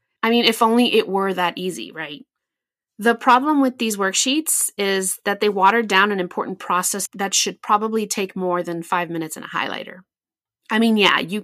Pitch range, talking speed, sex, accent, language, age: 185-230 Hz, 195 wpm, female, American, English, 30-49